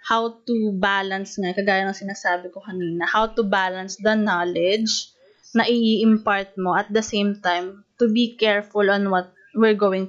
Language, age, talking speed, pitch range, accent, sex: Filipino, 20-39, 165 wpm, 195-230 Hz, native, female